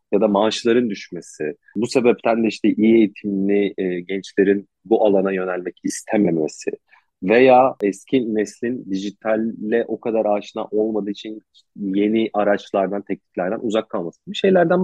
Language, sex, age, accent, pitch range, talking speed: Turkish, male, 40-59, native, 100-115 Hz, 130 wpm